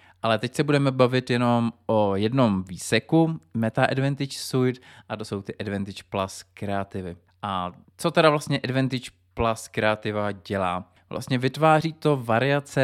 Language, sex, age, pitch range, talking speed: Czech, male, 20-39, 100-125 Hz, 145 wpm